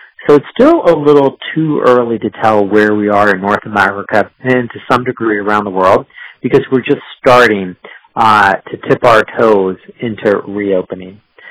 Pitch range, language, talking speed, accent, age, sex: 105-125 Hz, English, 170 wpm, American, 40-59, male